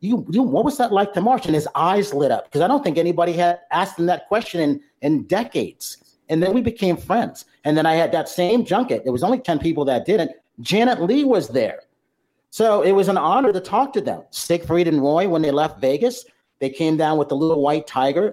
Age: 40-59